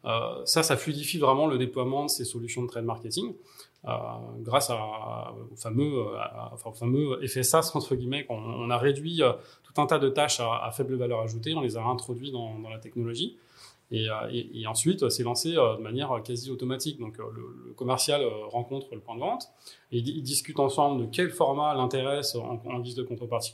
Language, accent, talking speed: French, French, 205 wpm